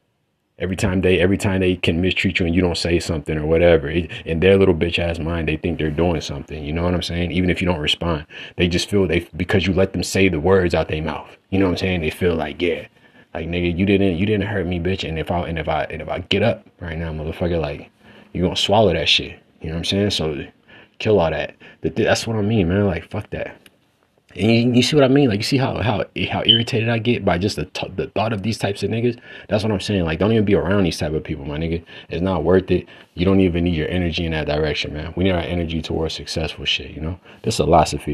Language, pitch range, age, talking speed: English, 80-100 Hz, 30-49, 275 wpm